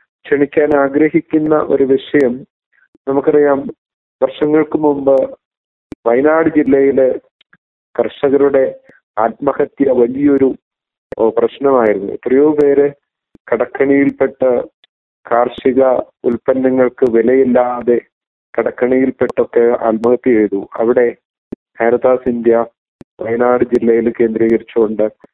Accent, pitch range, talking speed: native, 115-135 Hz, 65 wpm